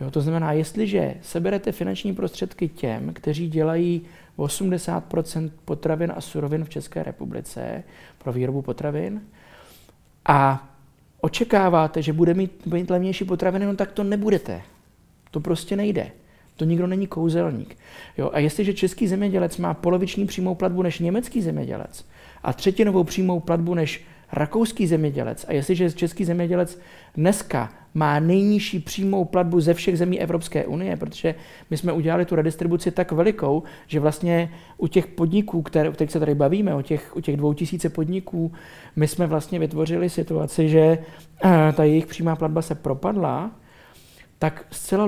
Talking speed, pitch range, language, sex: 150 wpm, 155-185 Hz, Czech, male